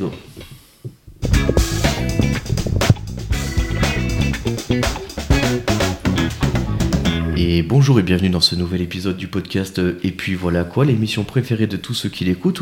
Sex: male